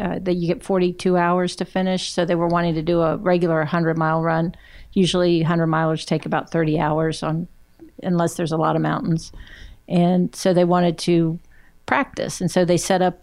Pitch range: 160-180 Hz